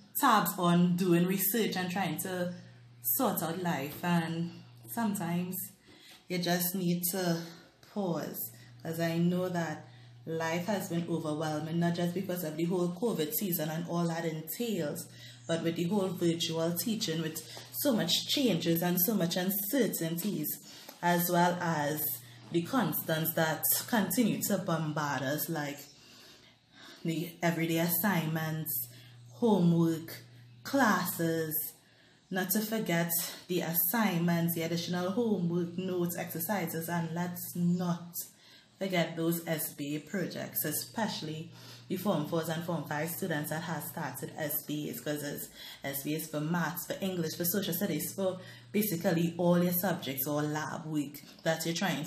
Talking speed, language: 135 wpm, English